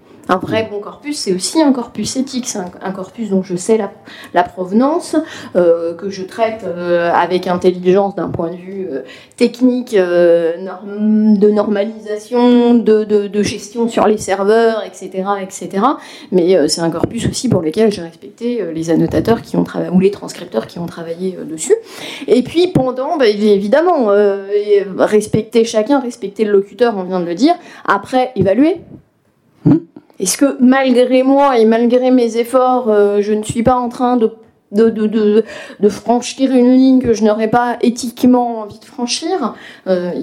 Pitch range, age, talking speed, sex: 190-245 Hz, 30-49, 180 wpm, female